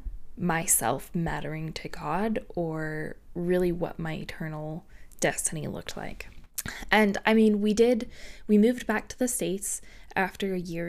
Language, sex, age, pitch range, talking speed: English, female, 20-39, 175-220 Hz, 145 wpm